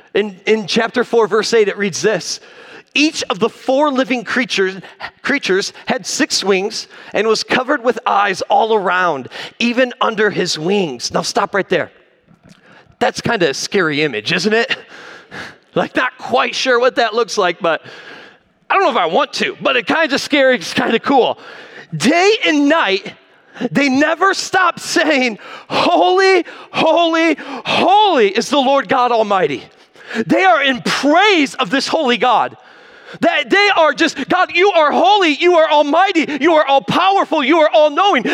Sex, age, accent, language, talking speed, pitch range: male, 40-59, American, English, 165 wpm, 230-320 Hz